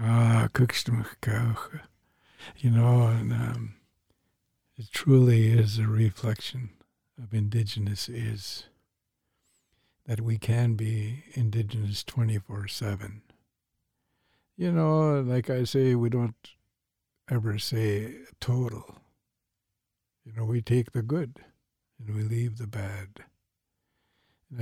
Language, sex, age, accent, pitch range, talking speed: English, male, 60-79, American, 105-125 Hz, 100 wpm